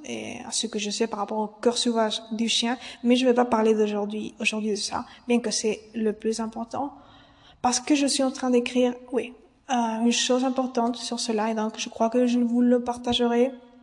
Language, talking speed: French, 225 wpm